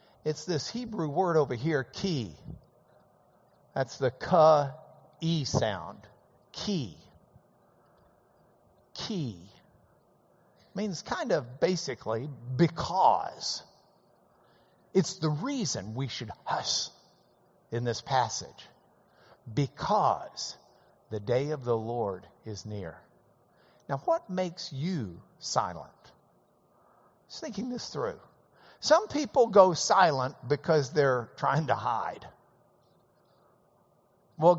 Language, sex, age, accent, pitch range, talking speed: English, male, 60-79, American, 135-195 Hz, 95 wpm